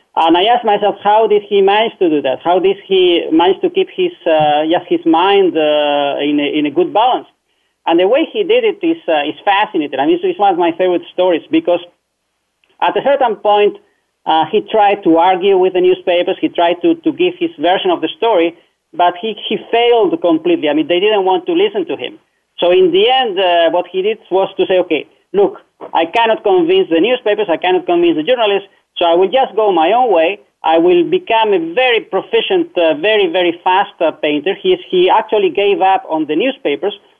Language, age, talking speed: English, 40-59, 220 wpm